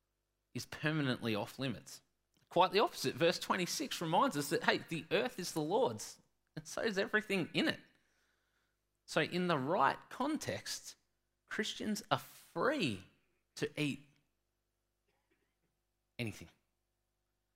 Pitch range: 110-175 Hz